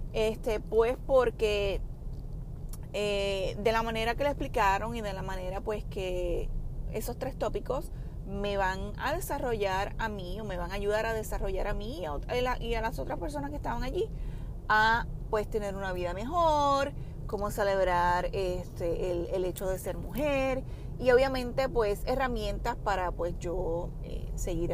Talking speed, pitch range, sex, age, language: 165 wpm, 190-270 Hz, female, 30-49, Spanish